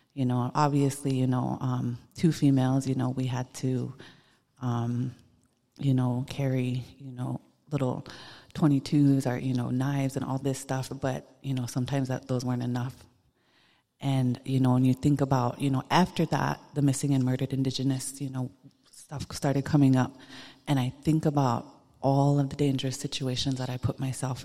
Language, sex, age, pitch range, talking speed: English, female, 30-49, 125-140 Hz, 180 wpm